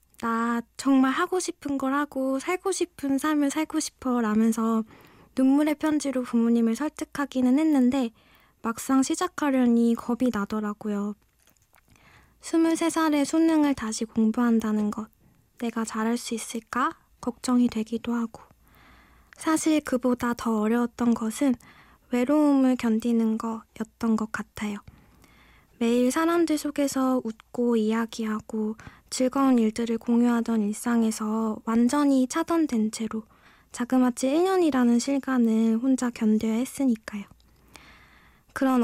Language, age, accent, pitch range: Korean, 20-39, native, 225-275 Hz